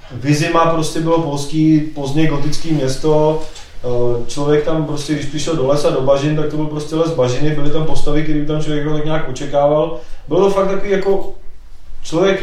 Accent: native